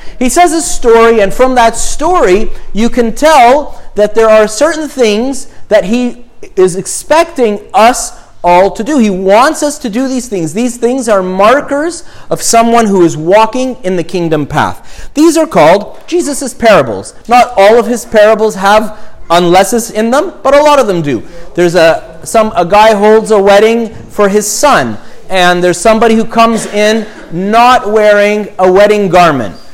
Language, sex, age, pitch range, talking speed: English, male, 40-59, 185-235 Hz, 175 wpm